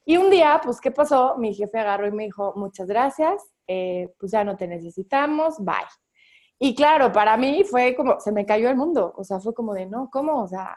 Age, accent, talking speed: 20-39, Mexican, 230 wpm